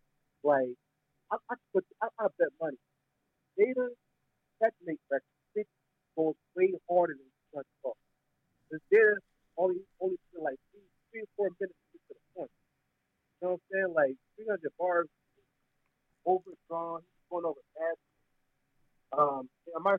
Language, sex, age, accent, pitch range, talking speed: English, male, 40-59, American, 150-210 Hz, 145 wpm